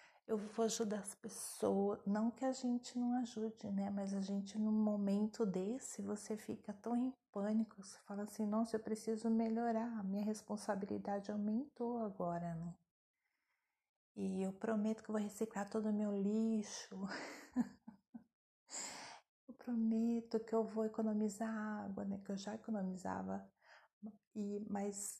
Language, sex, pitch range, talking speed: Portuguese, female, 190-225 Hz, 145 wpm